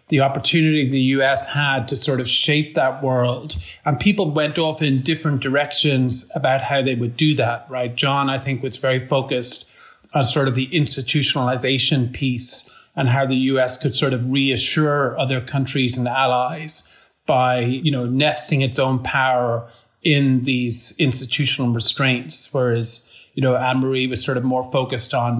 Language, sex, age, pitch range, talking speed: English, male, 30-49, 130-145 Hz, 165 wpm